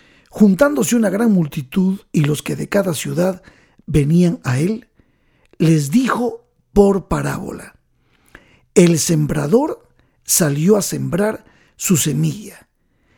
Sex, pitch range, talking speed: male, 160-230 Hz, 110 wpm